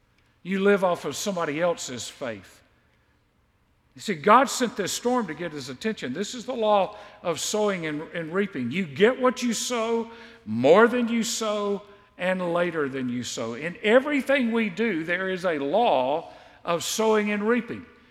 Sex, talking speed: male, 170 wpm